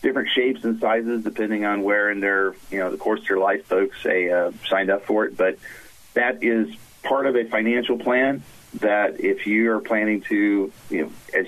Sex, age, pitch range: male, 40-59, 95-110 Hz